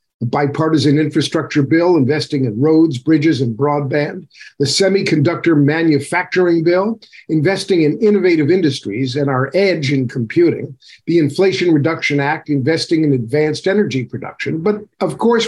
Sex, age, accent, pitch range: male, 50-69, American, 145-190 Hz